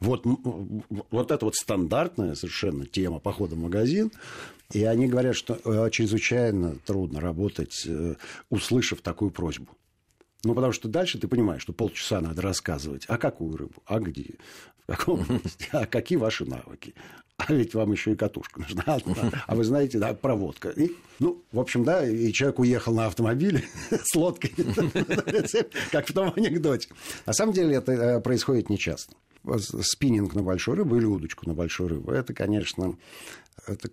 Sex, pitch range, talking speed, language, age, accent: male, 90-120 Hz, 160 wpm, Russian, 50-69, native